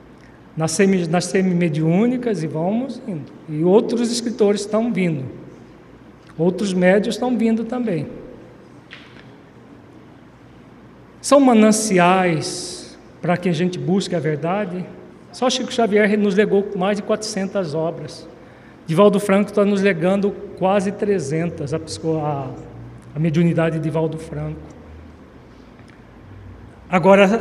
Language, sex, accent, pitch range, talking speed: Portuguese, male, Brazilian, 165-215 Hz, 100 wpm